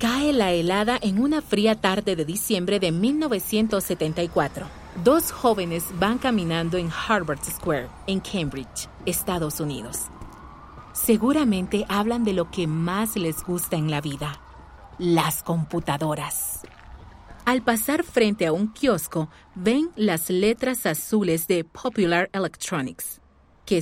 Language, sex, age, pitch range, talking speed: Spanish, female, 40-59, 170-235 Hz, 125 wpm